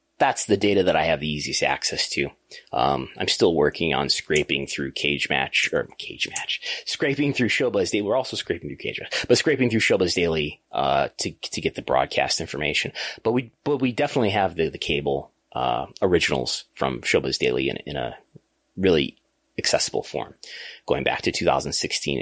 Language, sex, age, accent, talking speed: English, male, 30-49, American, 185 wpm